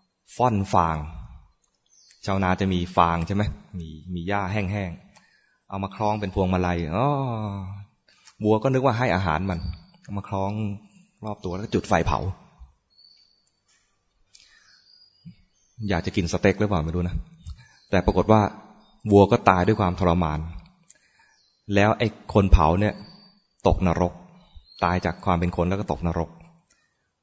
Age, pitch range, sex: 20-39, 85-105 Hz, male